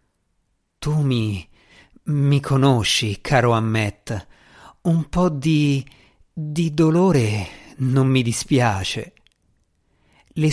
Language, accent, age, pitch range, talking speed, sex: Italian, native, 50-69, 105-155 Hz, 85 wpm, male